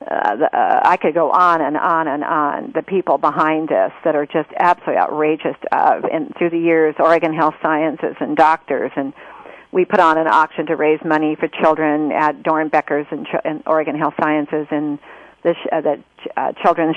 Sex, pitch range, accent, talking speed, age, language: female, 155-185 Hz, American, 190 wpm, 50-69, English